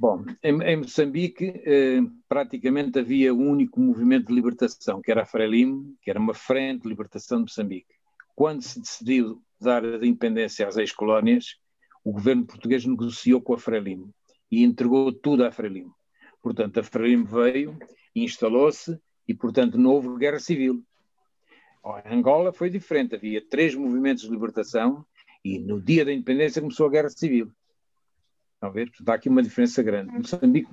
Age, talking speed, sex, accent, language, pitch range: 50-69, 160 wpm, male, Portuguese, Portuguese, 125-170 Hz